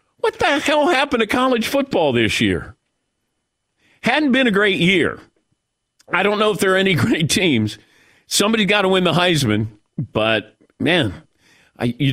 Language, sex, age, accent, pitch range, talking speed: English, male, 50-69, American, 115-170 Hz, 160 wpm